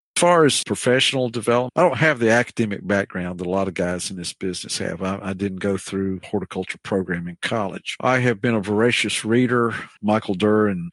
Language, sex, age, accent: English, male, 50-69, American